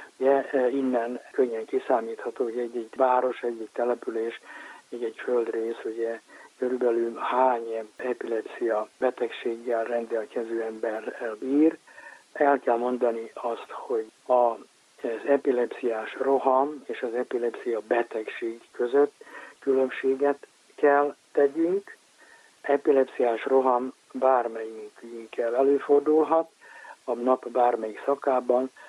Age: 60-79